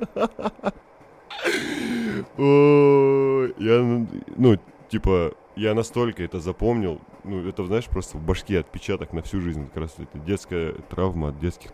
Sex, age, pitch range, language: male, 20-39, 80-100 Hz, Russian